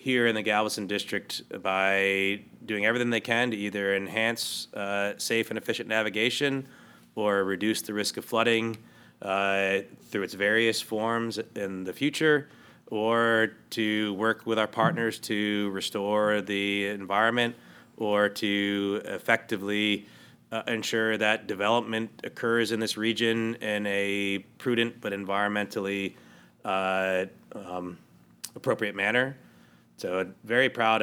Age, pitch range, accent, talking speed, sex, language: 30-49, 100-115 Hz, American, 125 wpm, male, English